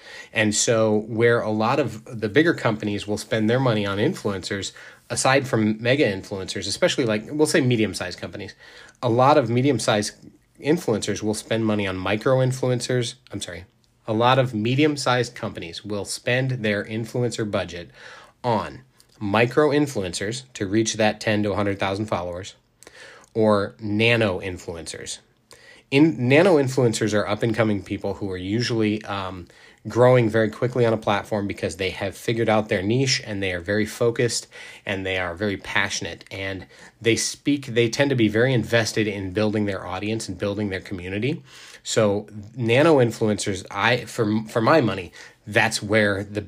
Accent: American